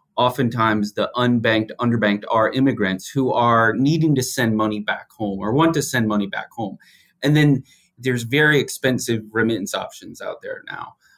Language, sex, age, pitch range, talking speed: English, male, 30-49, 105-120 Hz, 165 wpm